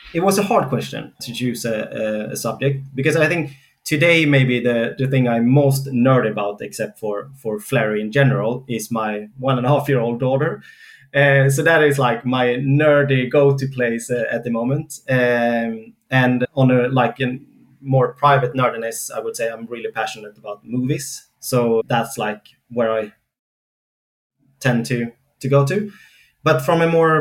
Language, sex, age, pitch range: English, male, 20-39, 115-140 Hz